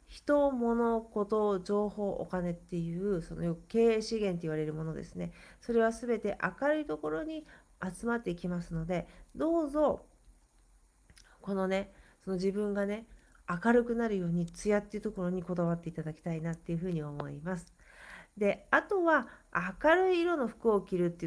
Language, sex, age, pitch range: Japanese, female, 40-59, 170-225 Hz